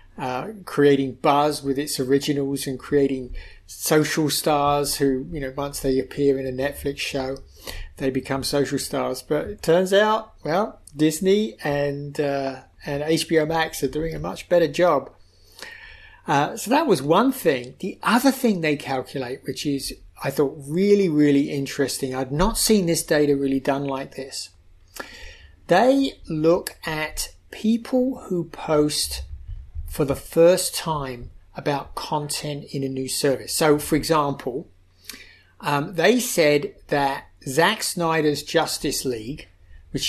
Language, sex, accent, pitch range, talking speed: English, male, British, 135-170 Hz, 145 wpm